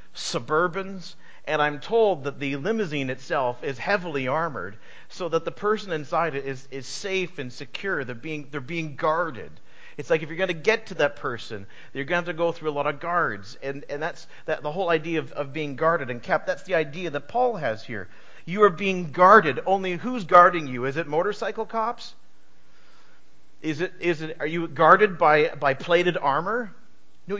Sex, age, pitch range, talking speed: male, 50-69, 135-210 Hz, 195 wpm